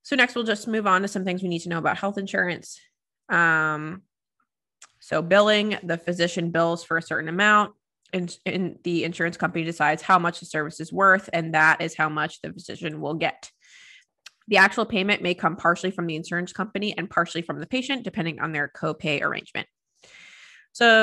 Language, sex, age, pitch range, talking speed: English, female, 20-39, 165-195 Hz, 195 wpm